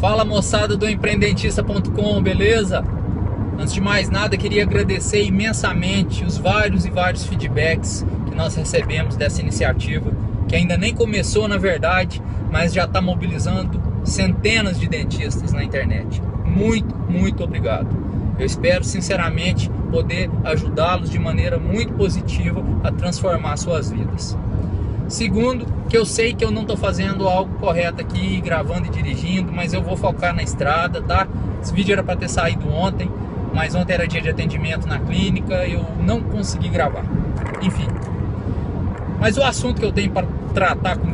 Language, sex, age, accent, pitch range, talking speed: Portuguese, male, 20-39, Brazilian, 90-105 Hz, 155 wpm